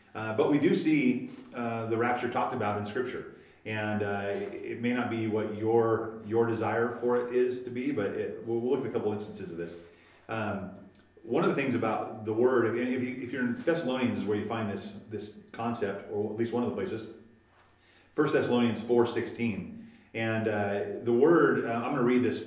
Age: 30-49